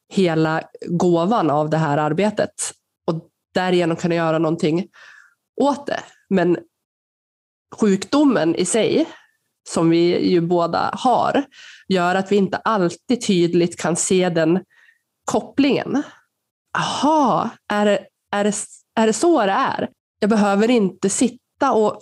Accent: native